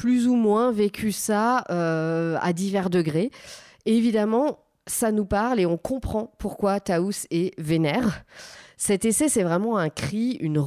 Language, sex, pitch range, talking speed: French, female, 175-220 Hz, 160 wpm